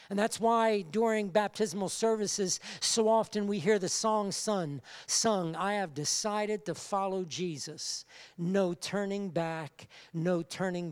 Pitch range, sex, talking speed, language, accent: 170-255 Hz, male, 130 wpm, English, American